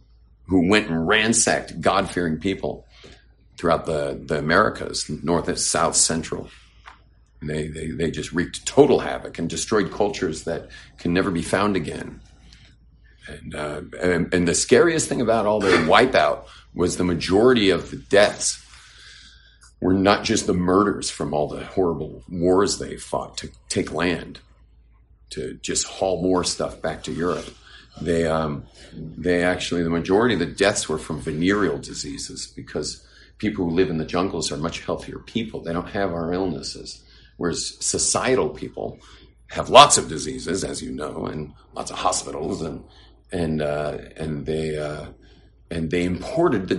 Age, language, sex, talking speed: 50-69, English, male, 160 wpm